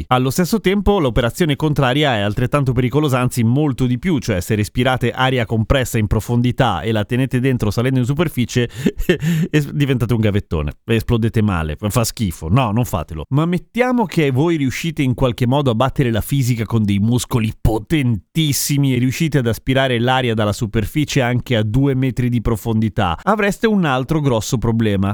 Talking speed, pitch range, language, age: 165 wpm, 120-160 Hz, Italian, 30-49